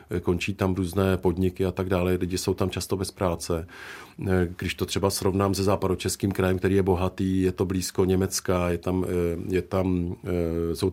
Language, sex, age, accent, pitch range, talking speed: Czech, male, 40-59, native, 95-110 Hz, 175 wpm